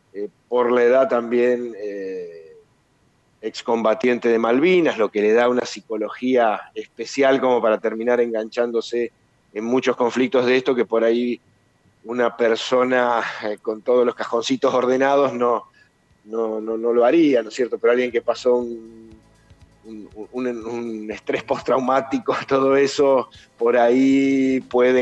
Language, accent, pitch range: Spanish, Argentinian, 110-135 Hz